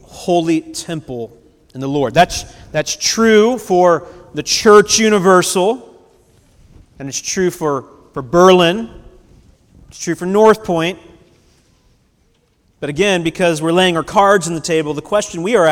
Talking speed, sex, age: 140 wpm, male, 40-59